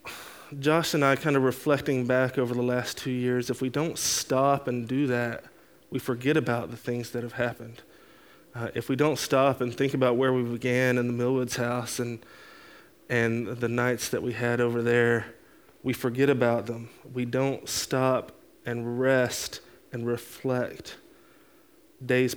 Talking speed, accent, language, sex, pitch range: 170 wpm, American, English, male, 120-130 Hz